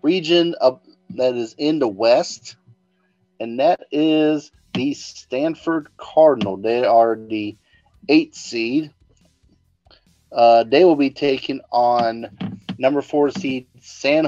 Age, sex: 30-49, male